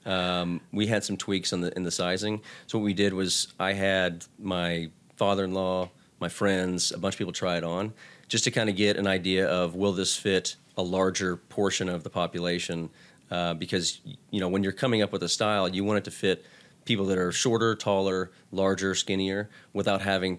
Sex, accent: male, American